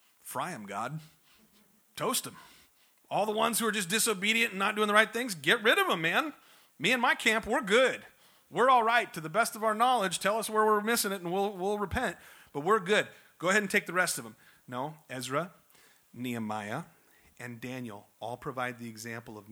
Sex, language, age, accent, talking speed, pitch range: male, English, 40-59, American, 210 wpm, 125-205 Hz